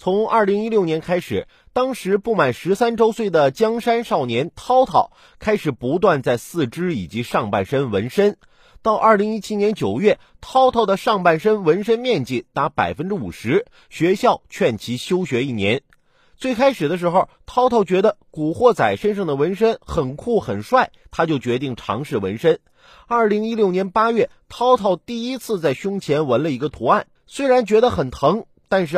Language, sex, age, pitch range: Chinese, male, 30-49, 165-230 Hz